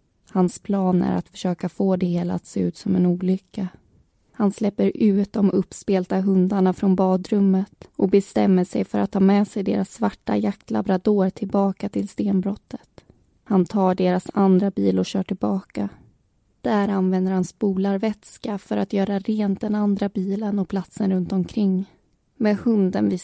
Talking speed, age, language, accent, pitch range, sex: 160 wpm, 20-39, Swedish, native, 175-200 Hz, female